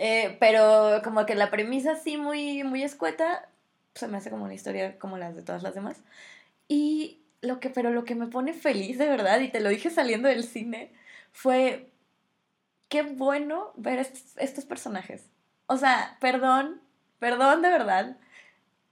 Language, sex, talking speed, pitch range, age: Spanish, female, 175 wpm, 235-315 Hz, 20-39